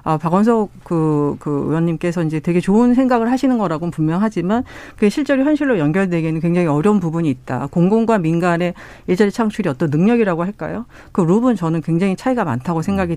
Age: 50-69